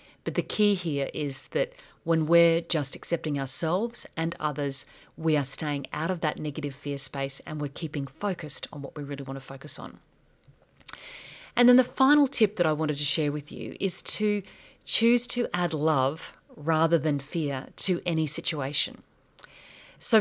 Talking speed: 175 wpm